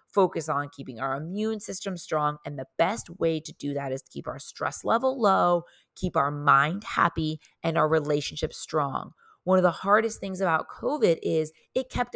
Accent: American